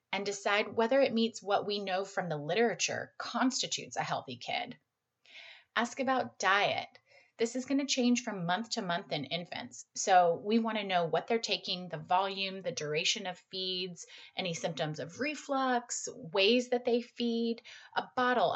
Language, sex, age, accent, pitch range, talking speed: English, female, 30-49, American, 185-240 Hz, 170 wpm